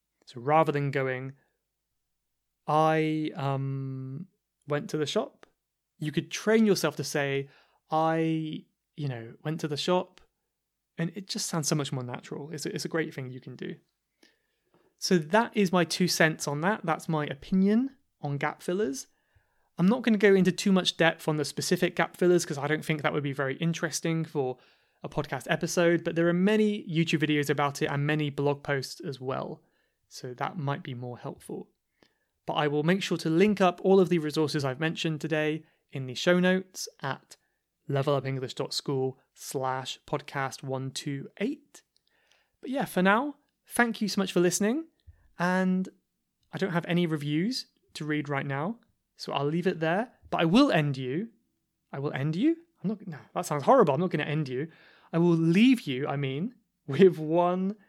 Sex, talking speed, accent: male, 180 wpm, British